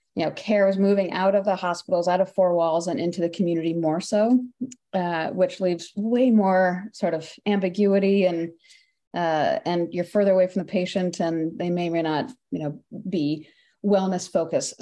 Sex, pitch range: female, 180-210 Hz